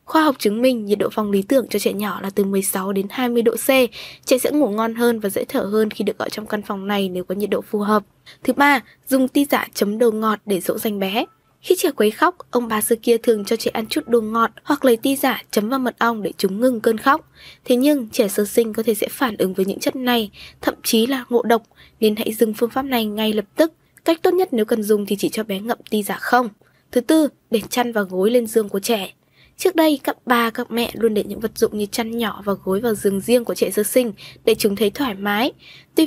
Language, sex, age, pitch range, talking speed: Vietnamese, female, 10-29, 210-260 Hz, 270 wpm